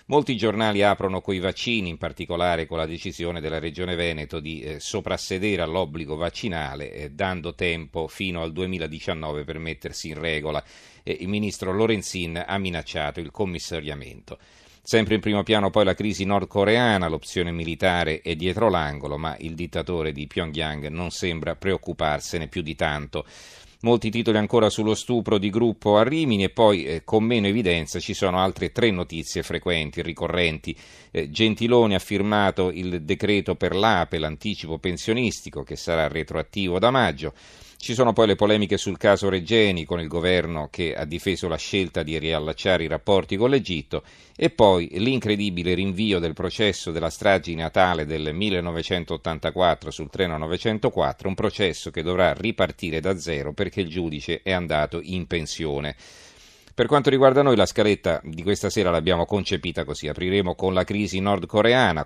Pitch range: 80-100 Hz